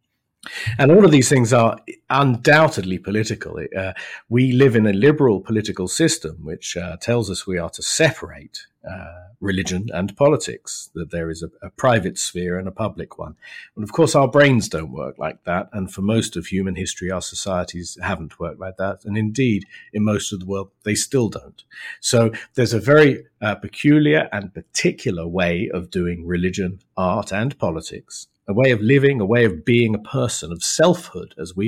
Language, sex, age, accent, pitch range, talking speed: English, male, 50-69, British, 95-125 Hz, 190 wpm